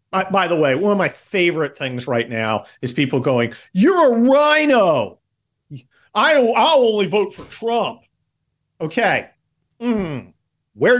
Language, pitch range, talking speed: English, 130-195 Hz, 130 wpm